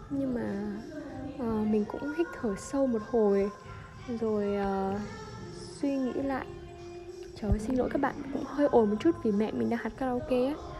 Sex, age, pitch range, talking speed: female, 10-29, 210-275 Hz, 170 wpm